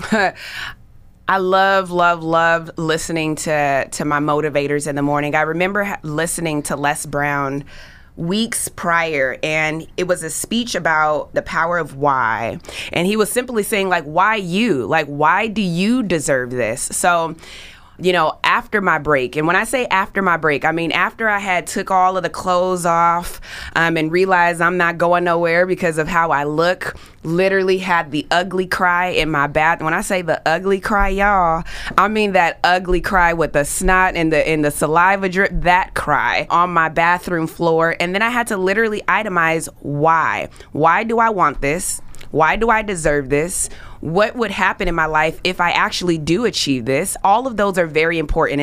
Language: English